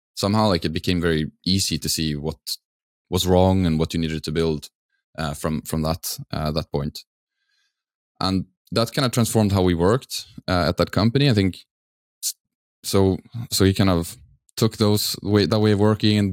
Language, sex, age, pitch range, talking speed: English, male, 20-39, 80-100 Hz, 185 wpm